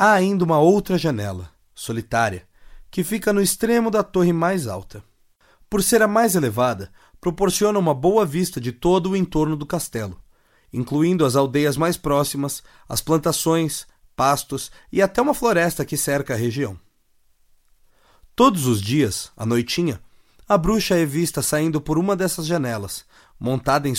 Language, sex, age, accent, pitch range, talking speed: Portuguese, male, 30-49, Brazilian, 110-190 Hz, 155 wpm